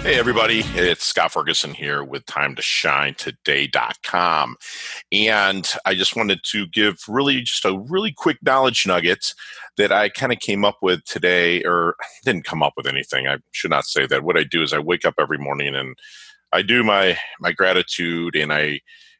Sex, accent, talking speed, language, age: male, American, 190 wpm, English, 40-59